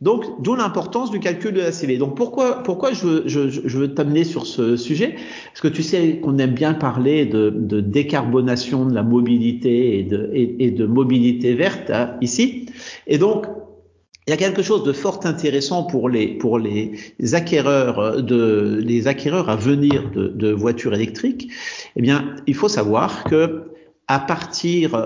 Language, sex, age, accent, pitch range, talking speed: French, male, 50-69, French, 120-170 Hz, 180 wpm